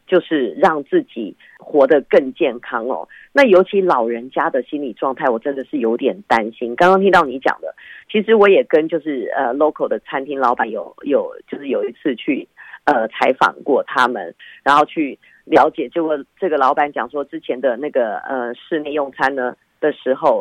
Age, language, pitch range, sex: 30-49, Chinese, 130-175 Hz, female